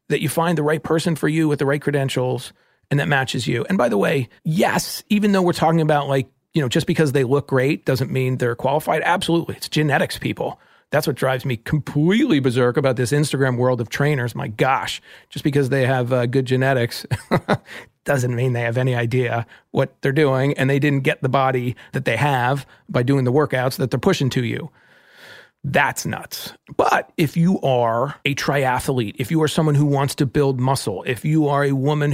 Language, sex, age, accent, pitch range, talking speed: English, male, 40-59, American, 130-160 Hz, 210 wpm